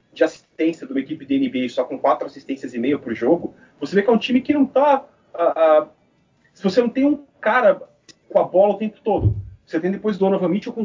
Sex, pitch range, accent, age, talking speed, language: male, 140-195 Hz, Brazilian, 30-49, 240 wpm, Portuguese